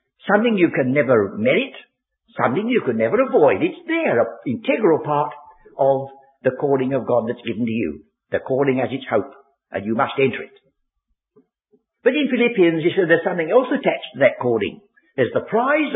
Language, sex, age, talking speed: English, male, 60-79, 185 wpm